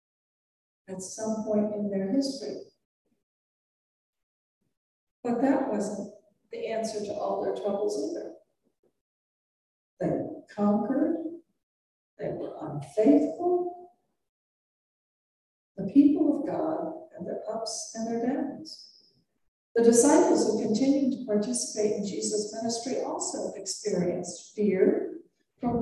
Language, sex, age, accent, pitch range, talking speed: English, female, 60-79, American, 205-300 Hz, 100 wpm